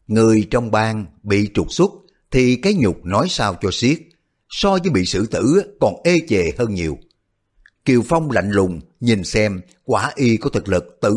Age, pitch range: 60-79, 100-145 Hz